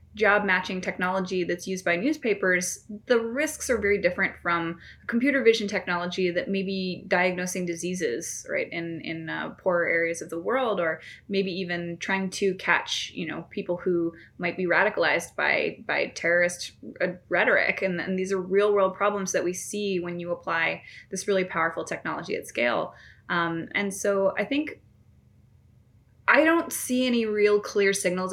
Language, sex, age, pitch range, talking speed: English, female, 20-39, 175-205 Hz, 165 wpm